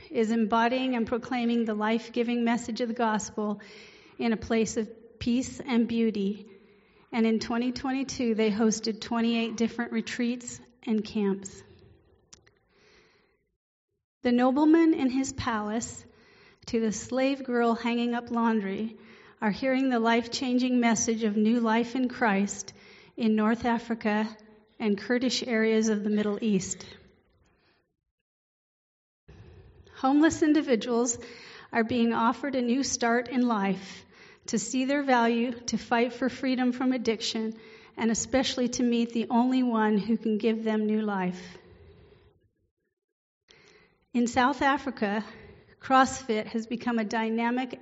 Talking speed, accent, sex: 130 wpm, American, female